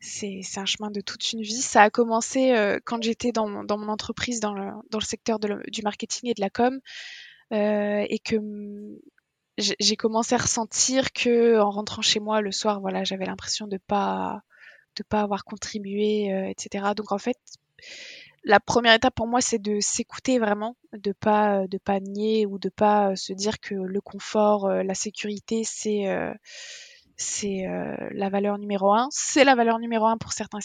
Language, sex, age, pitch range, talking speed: French, female, 20-39, 205-240 Hz, 195 wpm